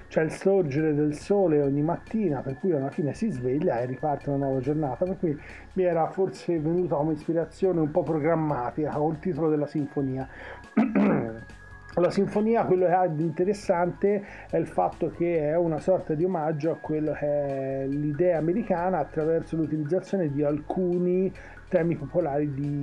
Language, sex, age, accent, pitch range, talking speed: Italian, male, 40-59, native, 150-185 Hz, 165 wpm